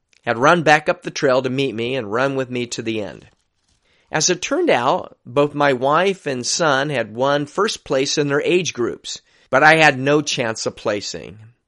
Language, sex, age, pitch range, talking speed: Persian, male, 40-59, 130-155 Hz, 205 wpm